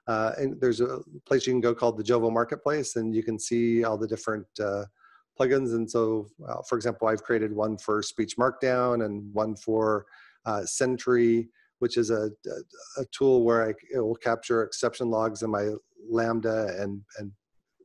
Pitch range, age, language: 105-120 Hz, 40-59, English